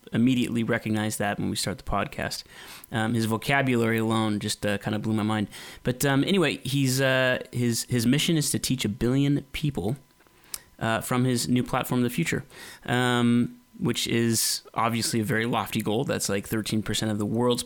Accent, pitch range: American, 115-130 Hz